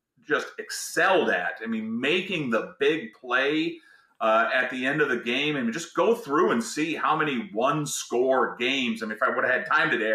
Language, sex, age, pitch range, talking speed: English, male, 30-49, 115-165 Hz, 215 wpm